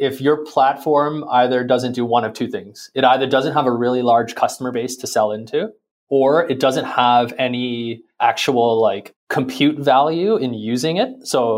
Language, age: English, 20-39